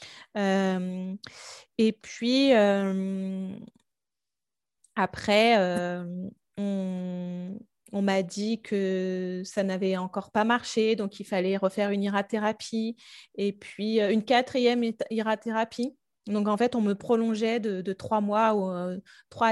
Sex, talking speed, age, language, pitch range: female, 130 wpm, 20-39, French, 195-225 Hz